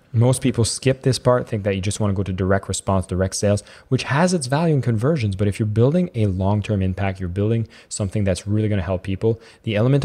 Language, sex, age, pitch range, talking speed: English, male, 20-39, 95-115 Hz, 245 wpm